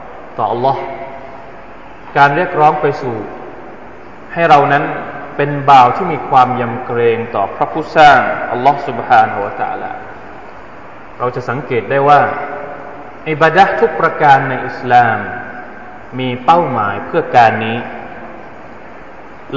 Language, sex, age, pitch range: Thai, male, 20-39, 125-155 Hz